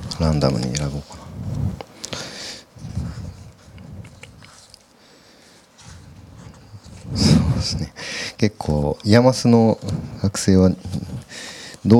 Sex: male